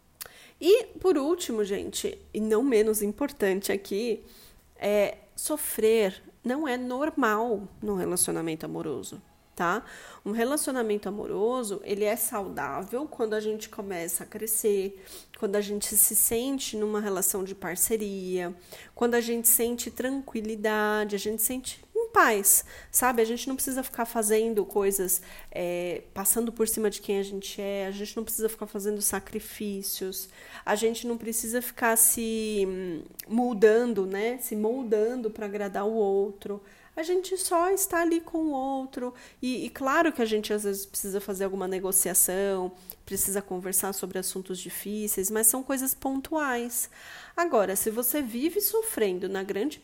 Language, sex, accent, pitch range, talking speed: Portuguese, female, Brazilian, 200-255 Hz, 145 wpm